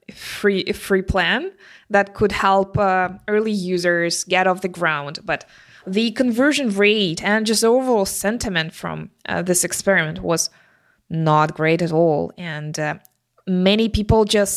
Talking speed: 145 wpm